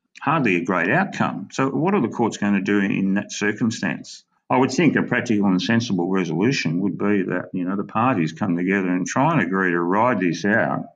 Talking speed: 220 wpm